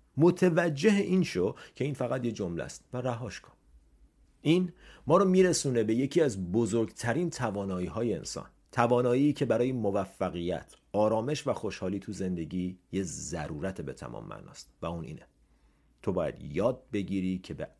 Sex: male